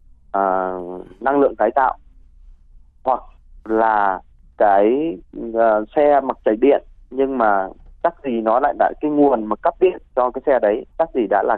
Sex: male